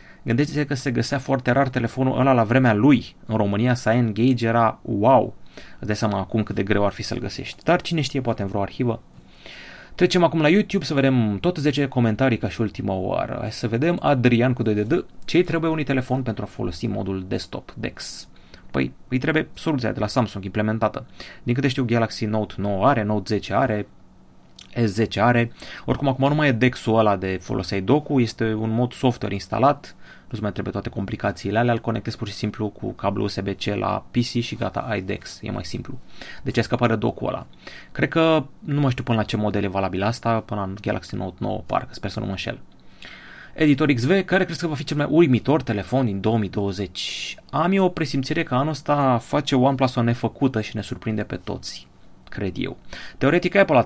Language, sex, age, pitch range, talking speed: Romanian, male, 30-49, 105-135 Hz, 205 wpm